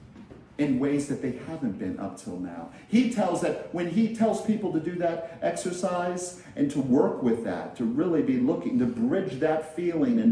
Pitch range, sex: 145-235 Hz, male